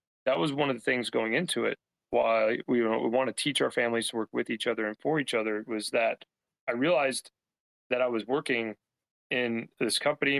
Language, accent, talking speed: English, American, 225 wpm